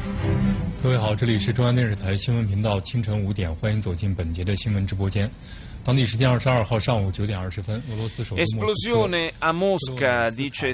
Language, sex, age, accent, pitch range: Italian, male, 30-49, native, 110-135 Hz